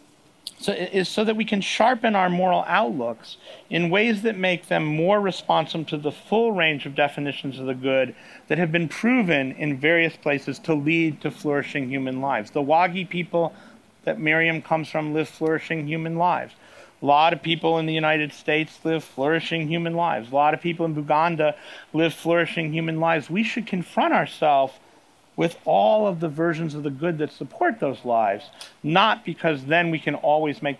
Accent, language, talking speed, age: American, English, 185 wpm, 40-59